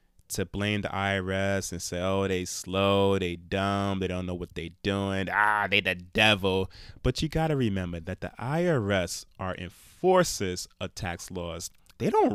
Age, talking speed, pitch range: 30-49, 175 wpm, 90-105 Hz